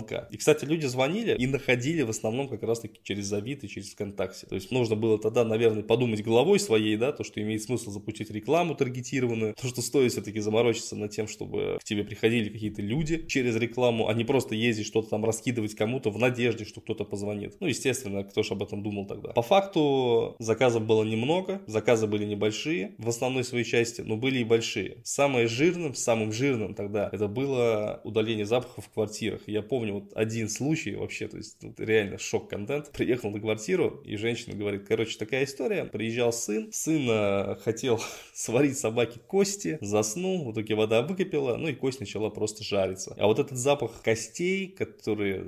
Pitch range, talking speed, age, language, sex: 105-130 Hz, 185 wpm, 20-39, Russian, male